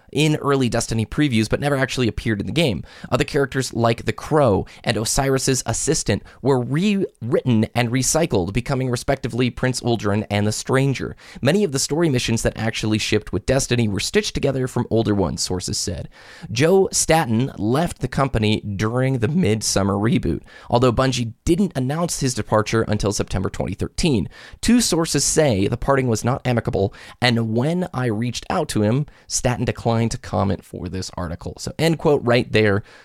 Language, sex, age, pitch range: English, male, 20-39, 105-140 Hz